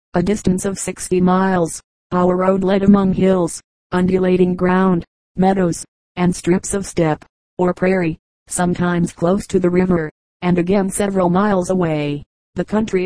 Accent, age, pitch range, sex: American, 40-59, 180-195 Hz, female